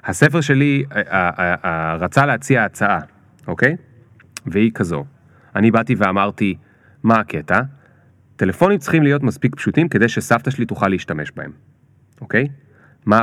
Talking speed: 140 wpm